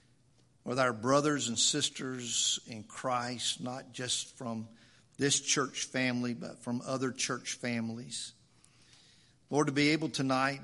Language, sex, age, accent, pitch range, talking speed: English, male, 50-69, American, 120-130 Hz, 130 wpm